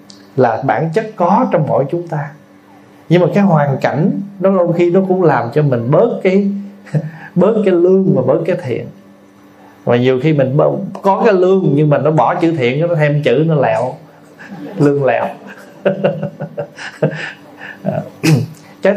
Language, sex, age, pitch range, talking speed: Vietnamese, male, 20-39, 120-175 Hz, 170 wpm